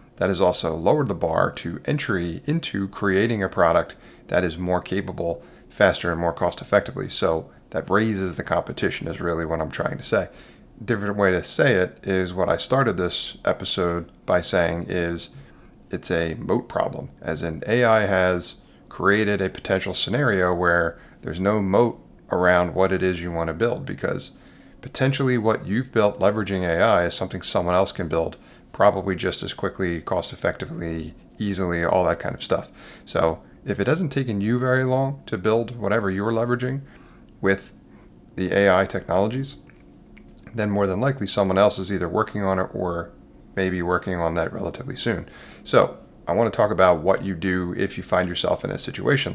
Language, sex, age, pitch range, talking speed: English, male, 30-49, 85-110 Hz, 180 wpm